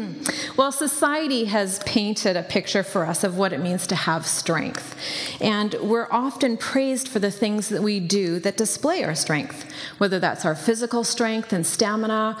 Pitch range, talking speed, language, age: 180-235 Hz, 175 wpm, English, 40-59